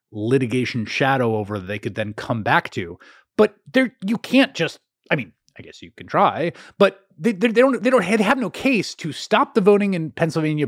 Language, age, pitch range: English, 30-49, 125-170 Hz